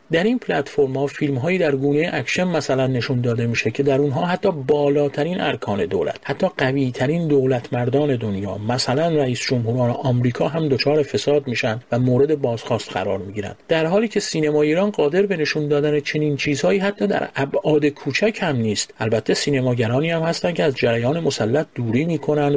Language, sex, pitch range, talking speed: Persian, male, 120-155 Hz, 170 wpm